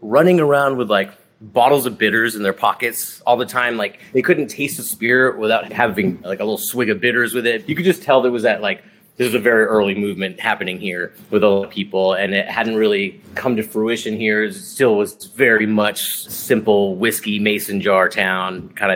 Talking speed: 220 wpm